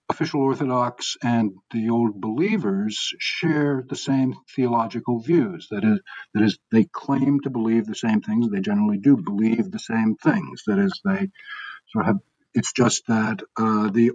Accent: American